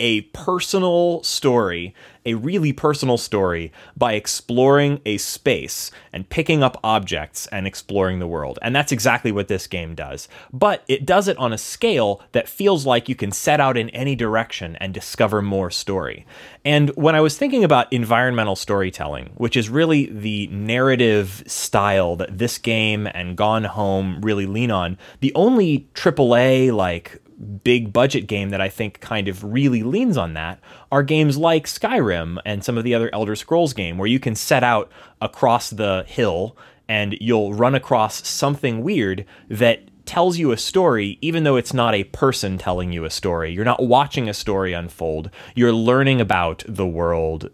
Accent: American